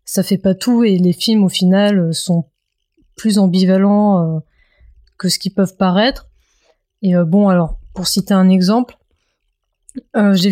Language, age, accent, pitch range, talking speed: French, 20-39, French, 185-220 Hz, 160 wpm